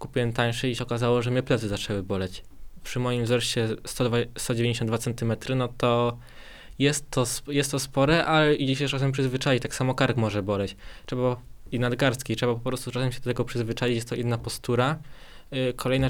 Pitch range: 115-125 Hz